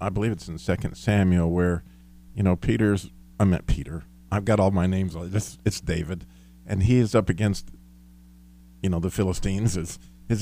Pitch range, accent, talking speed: 85-120 Hz, American, 185 wpm